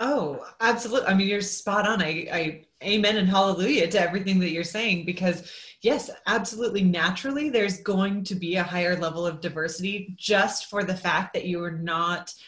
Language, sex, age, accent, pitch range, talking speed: English, female, 30-49, American, 165-195 Hz, 185 wpm